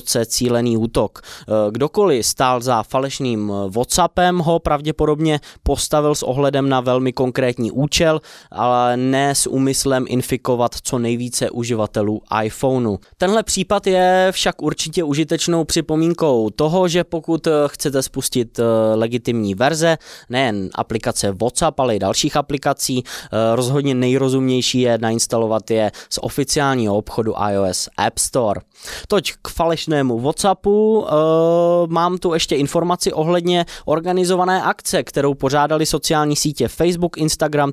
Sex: male